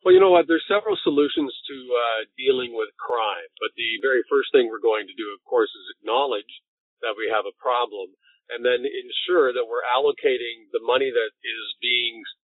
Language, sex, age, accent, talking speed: English, male, 40-59, American, 195 wpm